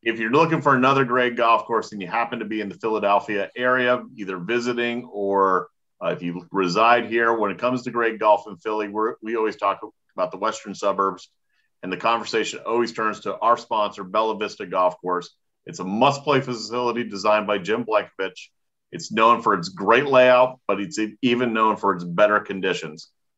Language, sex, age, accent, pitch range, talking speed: English, male, 40-59, American, 100-125 Hz, 195 wpm